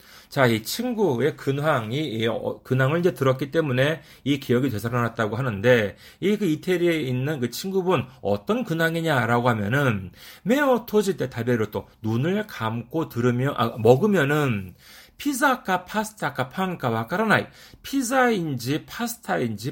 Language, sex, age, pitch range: Korean, male, 40-59, 115-195 Hz